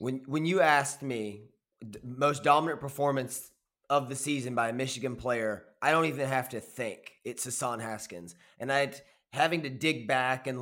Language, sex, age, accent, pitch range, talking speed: English, male, 30-49, American, 120-145 Hz, 180 wpm